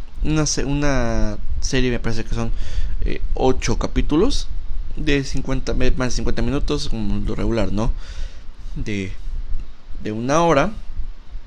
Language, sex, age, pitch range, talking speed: Spanish, male, 30-49, 85-120 Hz, 125 wpm